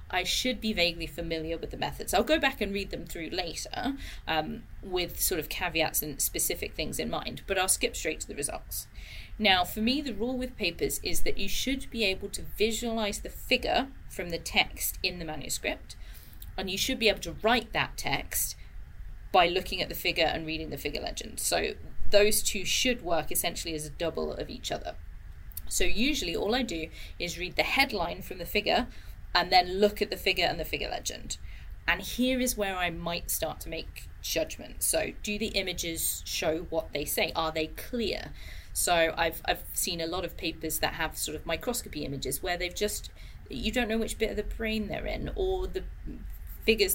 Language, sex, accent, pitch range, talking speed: English, female, British, 155-215 Hz, 205 wpm